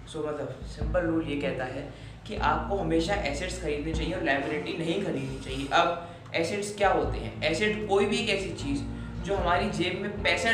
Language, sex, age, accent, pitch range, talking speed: Hindi, male, 20-39, native, 150-195 Hz, 200 wpm